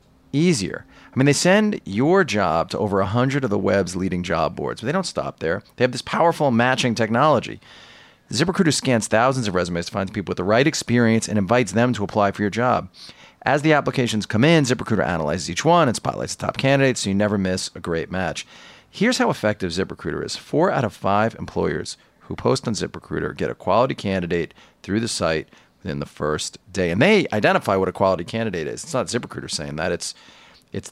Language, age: English, 40-59